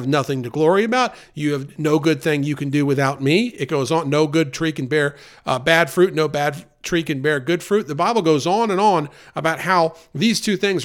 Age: 40-59